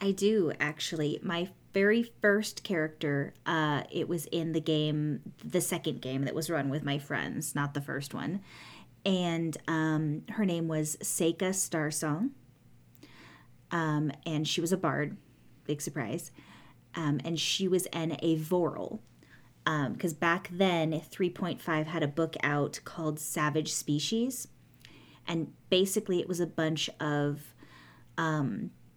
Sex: female